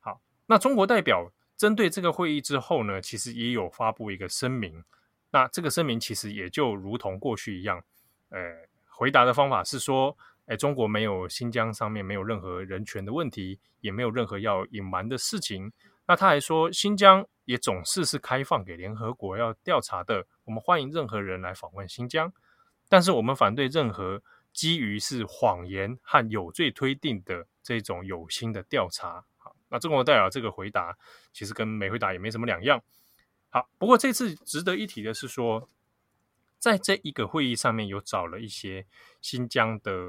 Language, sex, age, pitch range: Chinese, male, 20-39, 100-140 Hz